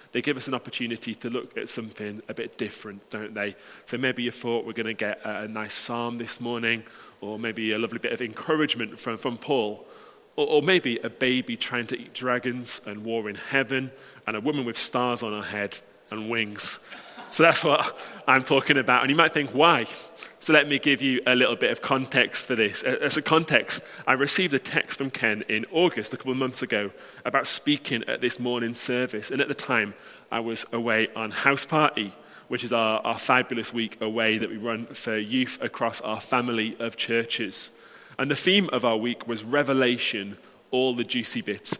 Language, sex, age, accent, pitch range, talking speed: English, male, 30-49, British, 110-135 Hz, 205 wpm